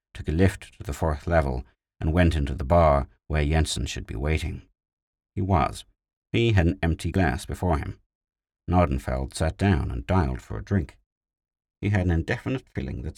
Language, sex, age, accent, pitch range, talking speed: English, male, 60-79, British, 80-100 Hz, 180 wpm